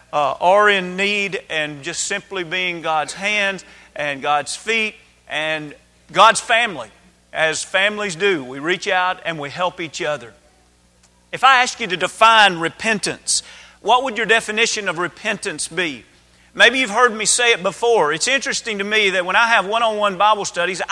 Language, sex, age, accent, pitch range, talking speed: English, male, 40-59, American, 180-250 Hz, 170 wpm